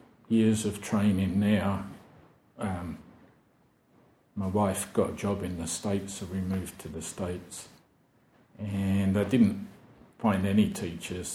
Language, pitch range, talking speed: English, 90-100 Hz, 130 wpm